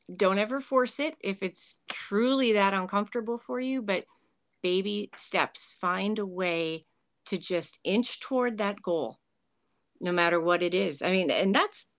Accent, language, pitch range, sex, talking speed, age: American, English, 190-255 Hz, female, 160 wpm, 40-59